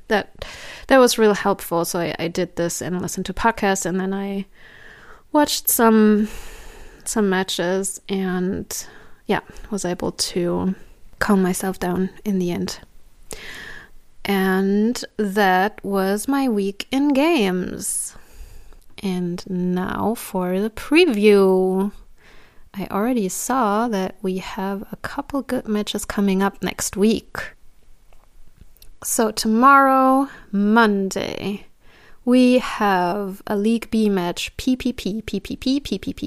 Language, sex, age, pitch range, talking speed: English, female, 20-39, 190-230 Hz, 115 wpm